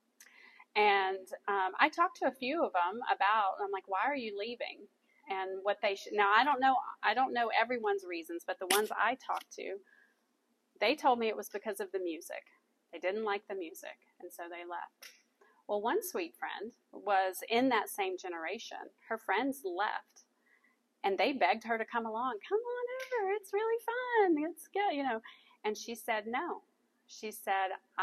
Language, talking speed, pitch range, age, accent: English, 190 wpm, 200-320 Hz, 30-49, American